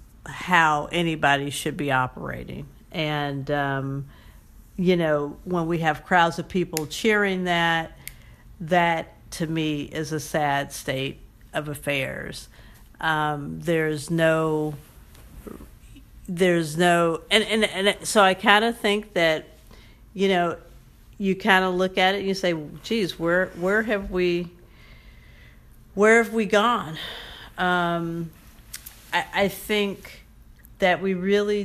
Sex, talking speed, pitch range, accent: female, 125 wpm, 160-200 Hz, American